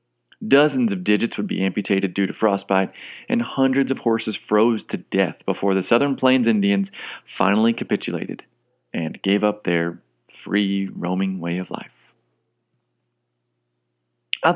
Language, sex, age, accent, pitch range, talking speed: English, male, 30-49, American, 95-145 Hz, 135 wpm